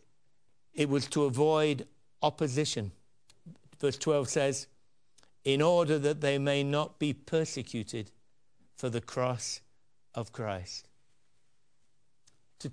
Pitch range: 130-200 Hz